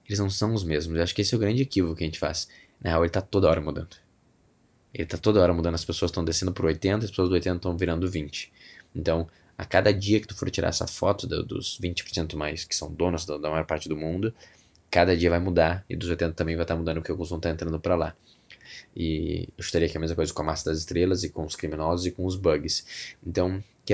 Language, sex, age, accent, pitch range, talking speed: Portuguese, male, 20-39, Brazilian, 85-100 Hz, 260 wpm